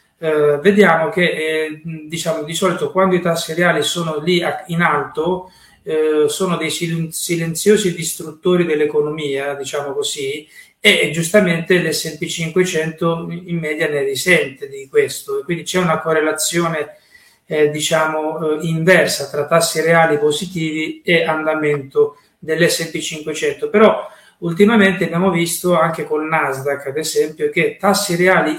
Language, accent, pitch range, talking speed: Italian, native, 155-195 Hz, 135 wpm